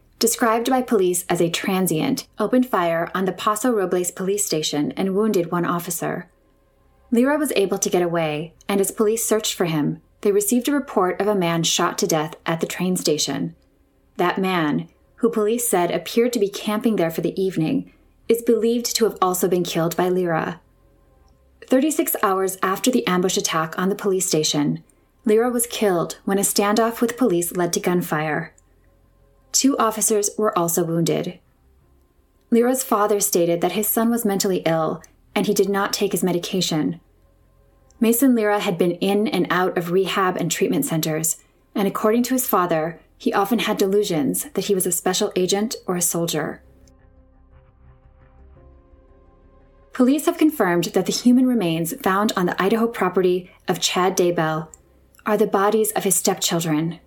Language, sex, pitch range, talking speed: English, female, 165-215 Hz, 165 wpm